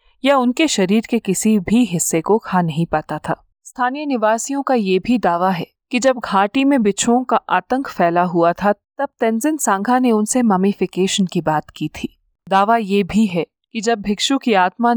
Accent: native